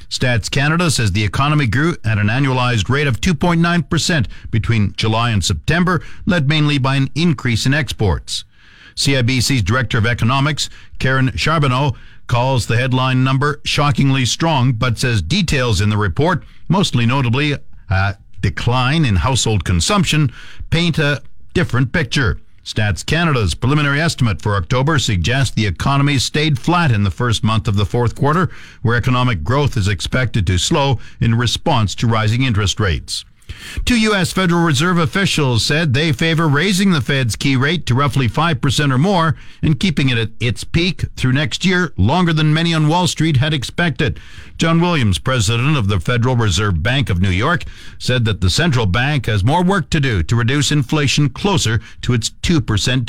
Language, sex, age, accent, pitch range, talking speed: English, male, 50-69, American, 110-155 Hz, 165 wpm